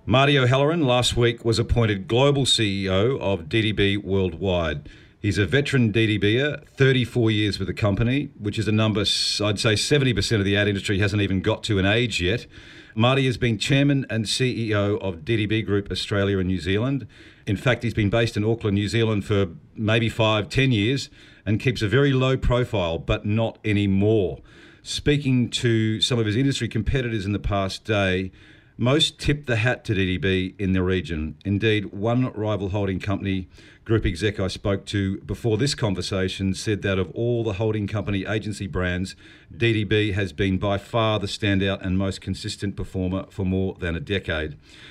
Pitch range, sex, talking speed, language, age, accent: 100-120 Hz, male, 175 wpm, English, 50-69, Australian